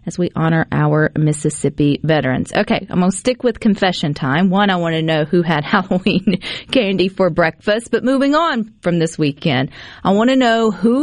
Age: 40-59